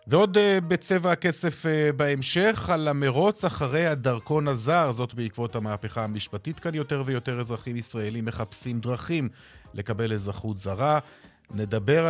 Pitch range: 110-155 Hz